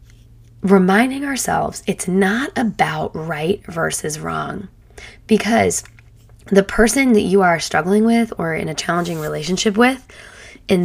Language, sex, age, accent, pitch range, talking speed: English, female, 20-39, American, 155-205 Hz, 125 wpm